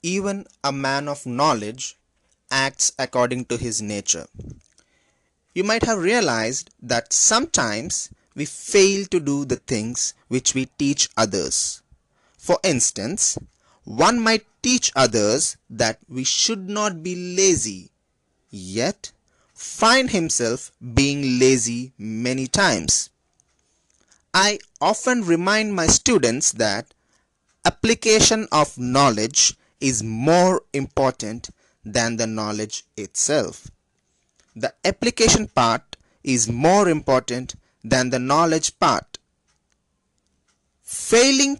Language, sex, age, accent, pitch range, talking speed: English, male, 30-49, Indian, 115-185 Hz, 105 wpm